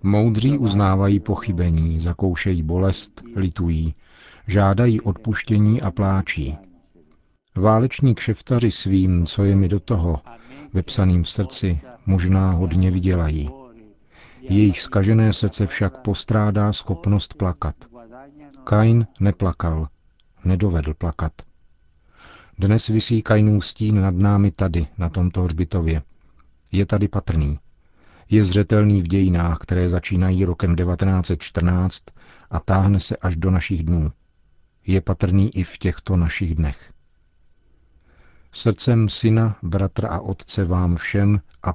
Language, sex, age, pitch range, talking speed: Czech, male, 50-69, 85-105 Hz, 110 wpm